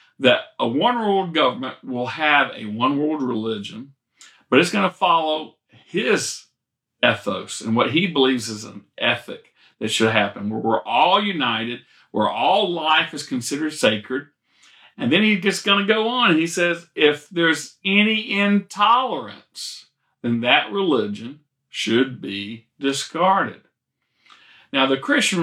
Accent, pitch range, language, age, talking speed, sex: American, 120-170 Hz, English, 50-69, 140 wpm, male